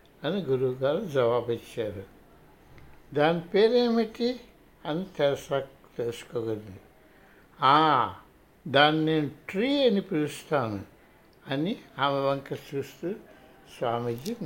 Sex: male